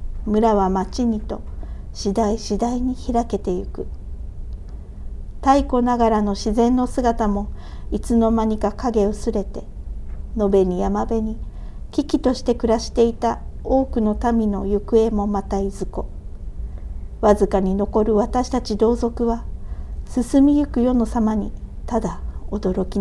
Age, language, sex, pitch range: 50-69, Japanese, female, 205-240 Hz